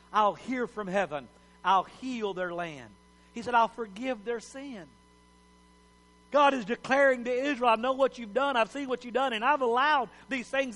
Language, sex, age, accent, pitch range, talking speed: English, male, 50-69, American, 190-235 Hz, 190 wpm